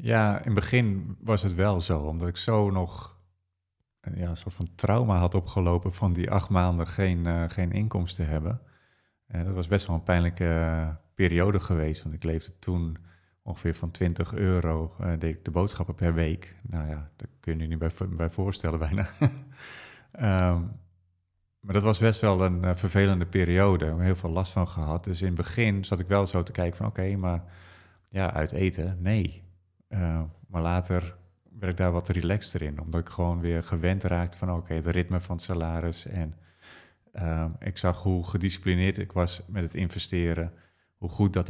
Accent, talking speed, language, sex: Dutch, 200 wpm, Dutch, male